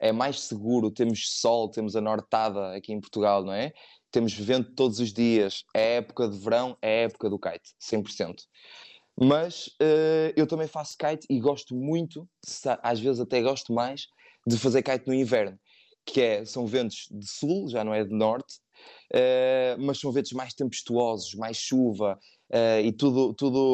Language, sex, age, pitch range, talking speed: Portuguese, male, 20-39, 110-130 Hz, 175 wpm